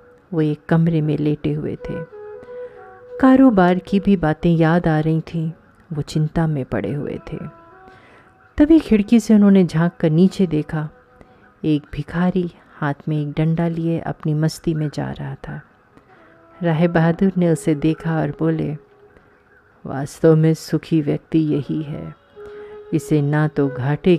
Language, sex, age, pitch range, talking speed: Hindi, female, 30-49, 155-210 Hz, 145 wpm